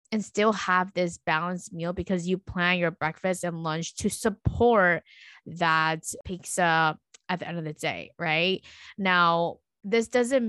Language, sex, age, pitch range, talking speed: English, female, 20-39, 170-200 Hz, 155 wpm